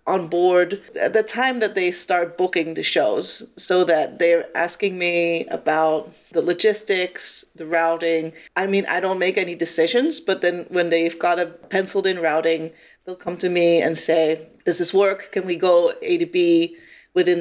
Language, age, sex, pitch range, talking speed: English, 30-49, female, 165-195 Hz, 185 wpm